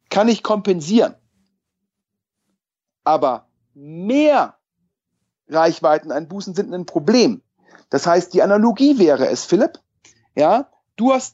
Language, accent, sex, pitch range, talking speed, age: German, German, male, 170-230 Hz, 105 wpm, 40-59